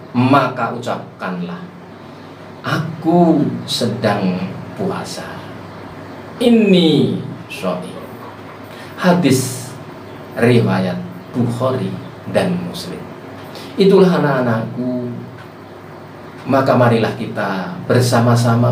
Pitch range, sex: 110-160 Hz, male